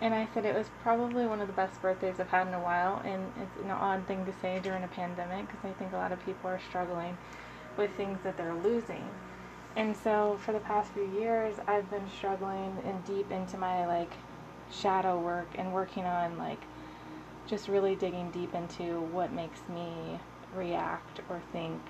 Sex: female